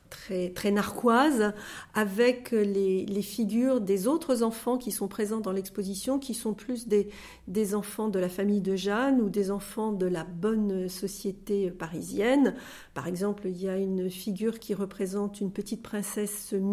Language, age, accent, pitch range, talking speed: French, 40-59, French, 195-225 Hz, 165 wpm